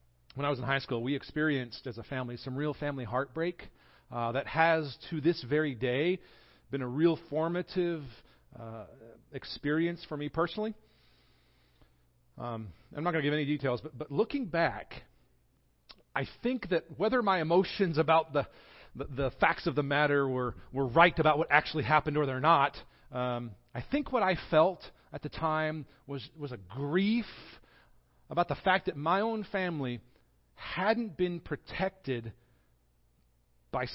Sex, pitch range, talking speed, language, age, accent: male, 100-160 Hz, 160 wpm, English, 40-59, American